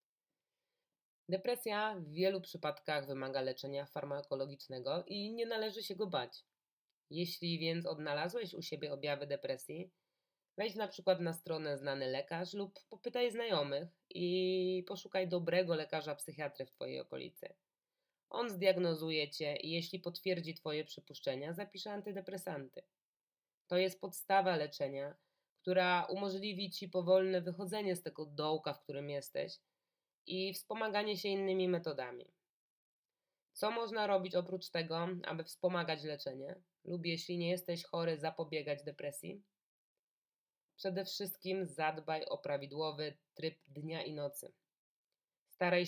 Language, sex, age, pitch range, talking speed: Polish, female, 20-39, 155-195 Hz, 120 wpm